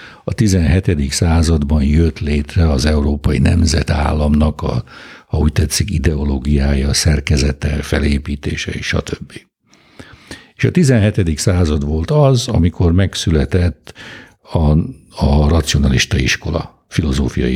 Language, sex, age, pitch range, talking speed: Hungarian, male, 60-79, 75-95 Hz, 95 wpm